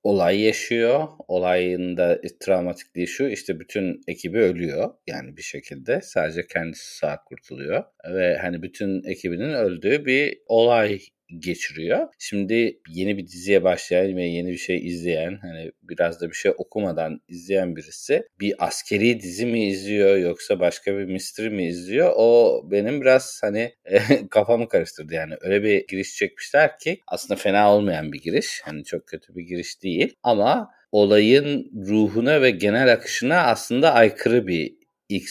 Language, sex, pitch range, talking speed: Turkish, male, 90-110 Hz, 150 wpm